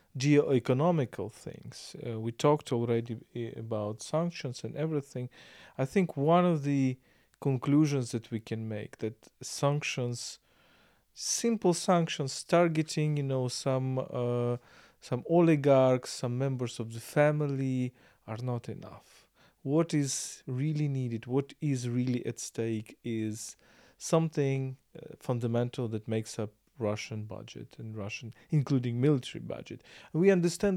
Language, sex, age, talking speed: English, male, 40-59, 125 wpm